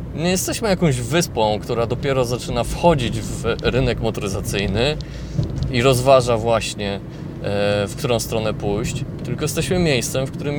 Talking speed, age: 130 wpm, 20-39